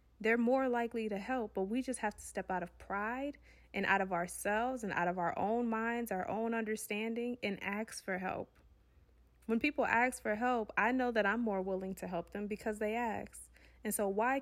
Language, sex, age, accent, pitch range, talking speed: English, female, 20-39, American, 195-230 Hz, 210 wpm